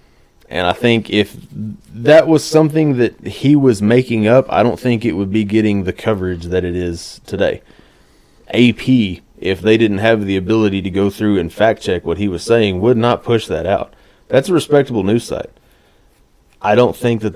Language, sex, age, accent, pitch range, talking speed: English, male, 30-49, American, 95-120 Hz, 195 wpm